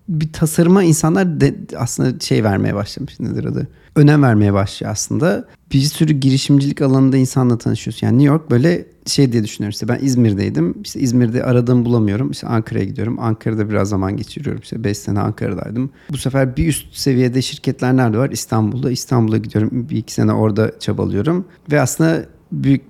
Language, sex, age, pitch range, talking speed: Turkish, male, 40-59, 110-145 Hz, 165 wpm